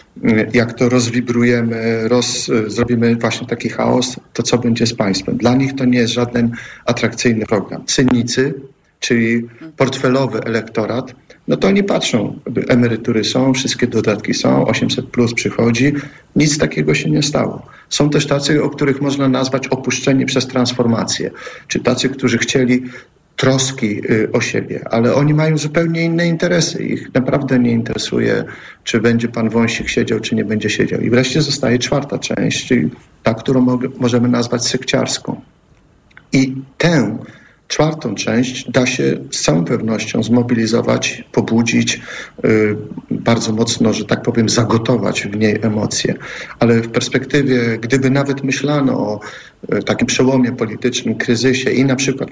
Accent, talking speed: native, 140 wpm